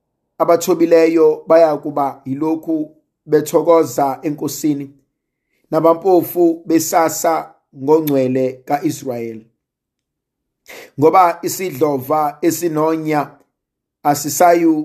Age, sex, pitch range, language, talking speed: 50-69, male, 150-170 Hz, English, 75 wpm